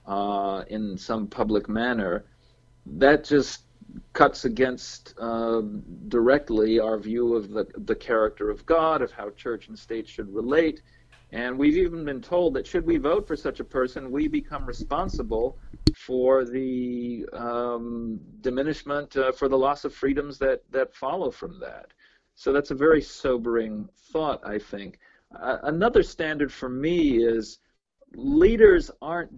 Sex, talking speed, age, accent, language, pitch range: male, 150 wpm, 40-59, American, English, 115-155 Hz